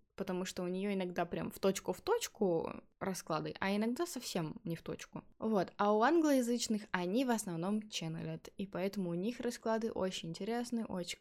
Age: 10-29